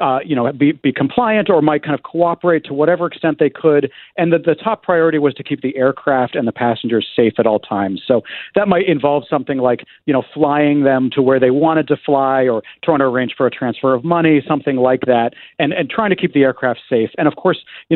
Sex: male